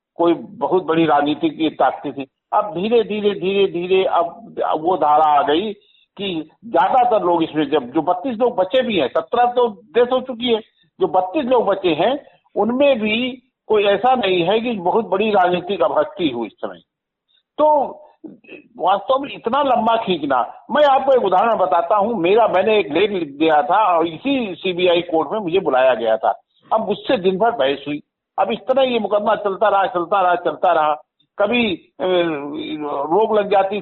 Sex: male